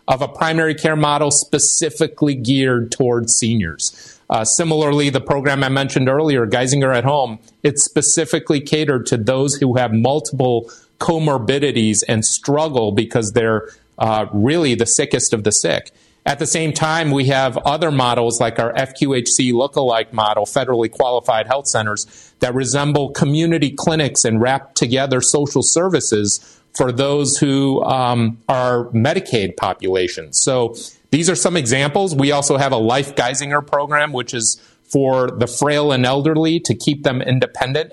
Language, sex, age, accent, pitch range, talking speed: English, male, 40-59, American, 120-150 Hz, 150 wpm